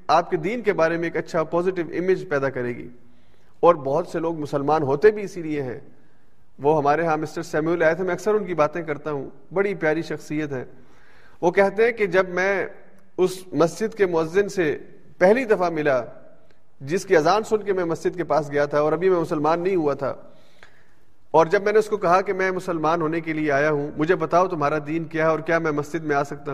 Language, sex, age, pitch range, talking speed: Urdu, male, 40-59, 155-200 Hz, 215 wpm